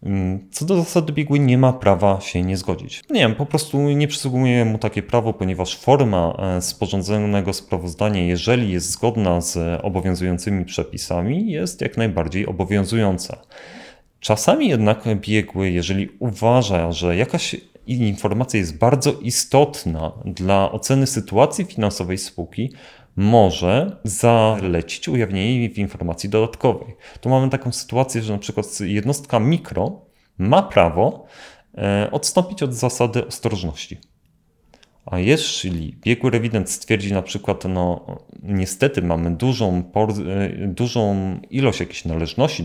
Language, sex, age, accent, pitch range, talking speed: Polish, male, 30-49, native, 90-115 Hz, 120 wpm